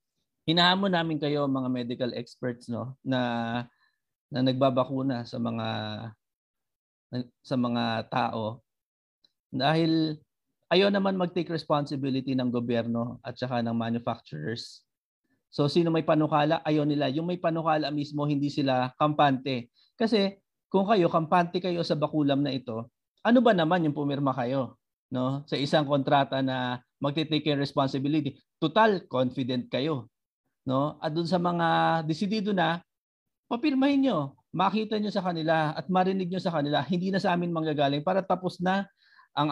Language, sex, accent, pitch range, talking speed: English, male, Filipino, 130-170 Hz, 140 wpm